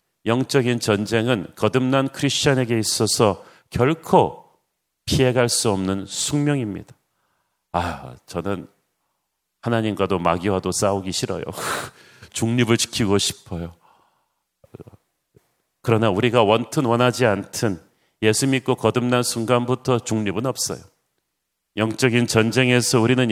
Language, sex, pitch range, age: Korean, male, 110-130 Hz, 40-59